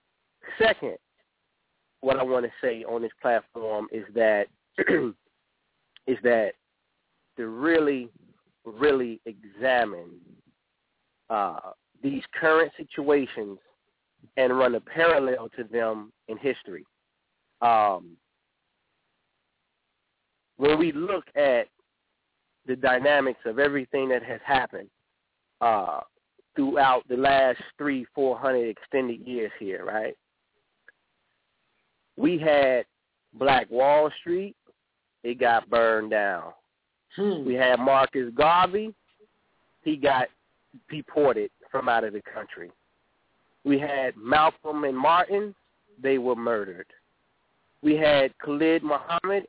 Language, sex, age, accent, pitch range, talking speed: English, male, 30-49, American, 125-175 Hz, 105 wpm